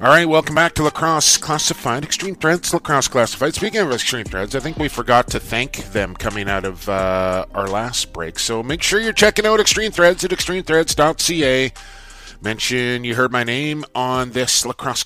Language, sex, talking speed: English, male, 185 wpm